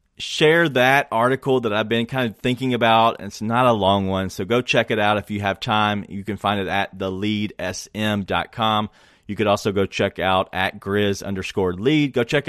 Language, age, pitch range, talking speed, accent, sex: English, 30-49, 100-125 Hz, 200 wpm, American, male